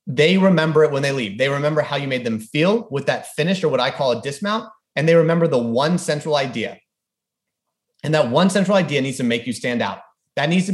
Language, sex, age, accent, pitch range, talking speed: English, male, 30-49, American, 130-165 Hz, 240 wpm